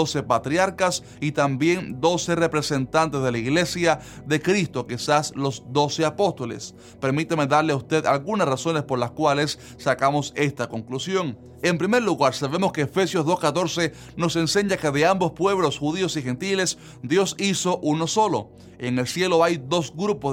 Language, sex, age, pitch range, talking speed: Spanish, male, 30-49, 135-175 Hz, 155 wpm